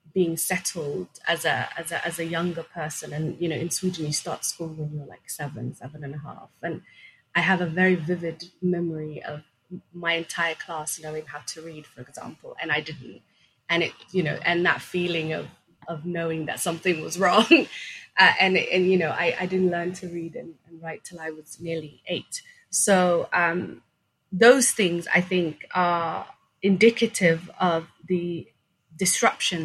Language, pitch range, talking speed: English, 155-180 Hz, 180 wpm